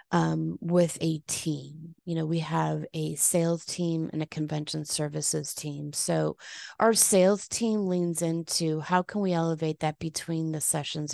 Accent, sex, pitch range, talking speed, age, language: American, female, 150-180 Hz, 160 wpm, 30-49, English